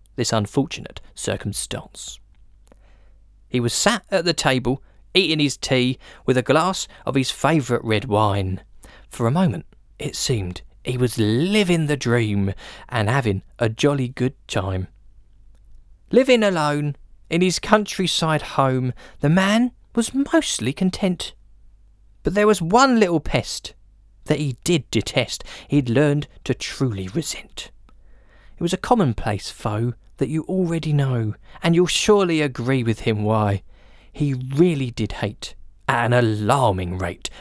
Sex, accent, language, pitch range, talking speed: male, British, English, 105-160 Hz, 140 wpm